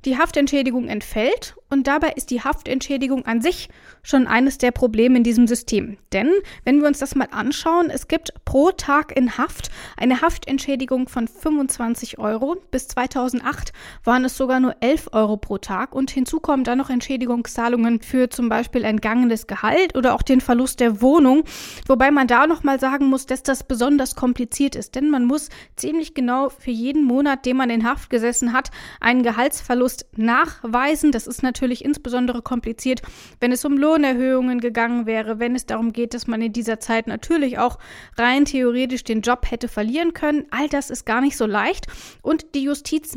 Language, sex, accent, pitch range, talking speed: German, female, German, 240-280 Hz, 180 wpm